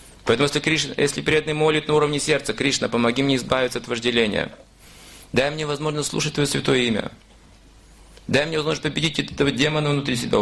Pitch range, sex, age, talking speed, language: 130-155 Hz, male, 30-49, 175 wpm, Russian